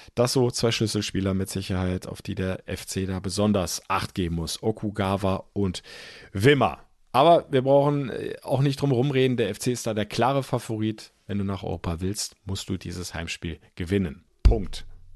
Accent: German